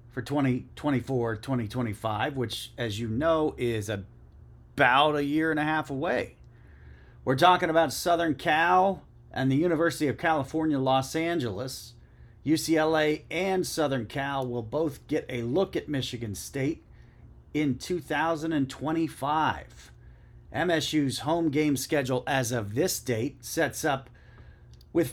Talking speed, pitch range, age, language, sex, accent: 125 wpm, 120-160 Hz, 40-59, English, male, American